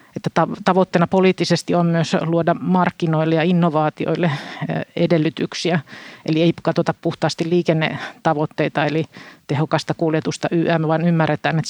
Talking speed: 110 wpm